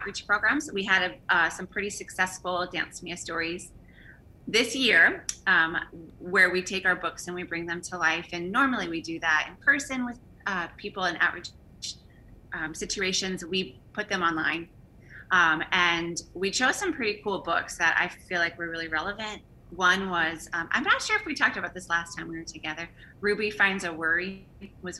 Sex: female